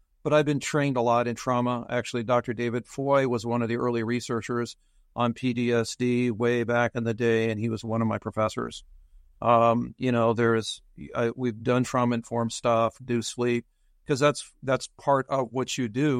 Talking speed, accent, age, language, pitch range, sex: 195 wpm, American, 50-69, English, 110-130 Hz, male